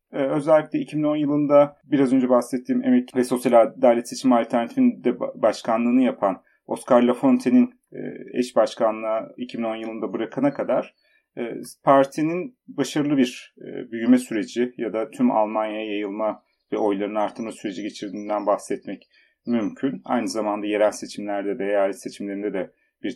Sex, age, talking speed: male, 40-59, 125 wpm